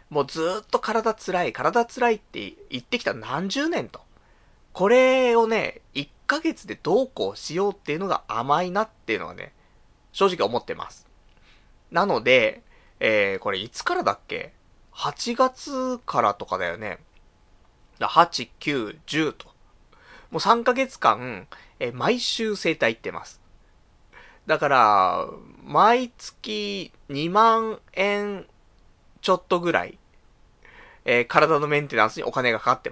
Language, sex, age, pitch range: Japanese, male, 20-39, 175-250 Hz